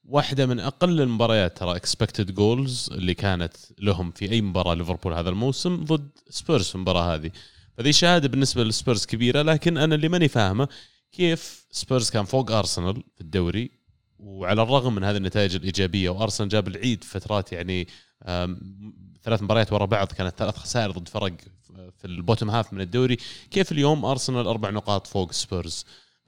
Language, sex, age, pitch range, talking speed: Arabic, male, 20-39, 95-120 Hz, 160 wpm